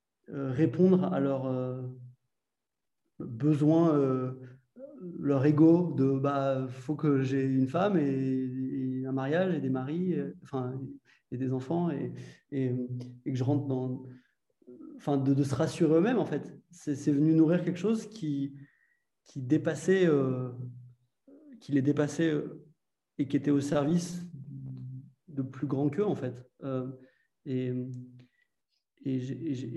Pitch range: 125-150 Hz